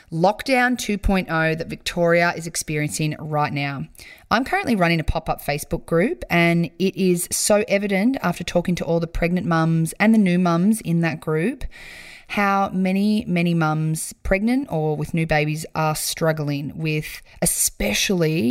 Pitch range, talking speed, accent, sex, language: 155-205 Hz, 150 wpm, Australian, female, English